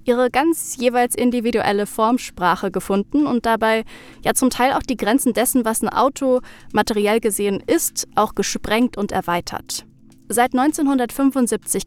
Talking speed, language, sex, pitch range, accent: 135 wpm, German, female, 205-250 Hz, German